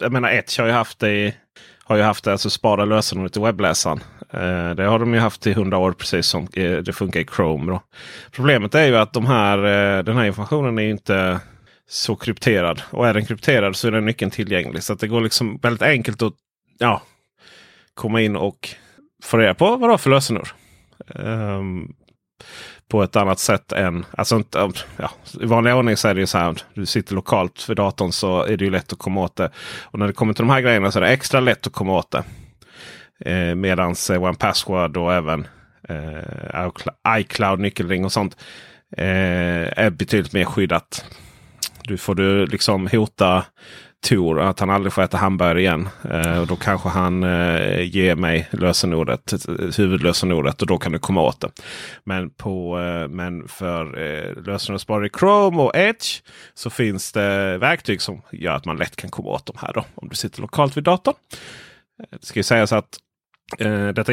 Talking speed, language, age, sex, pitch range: 195 wpm, Swedish, 30-49, male, 90-115 Hz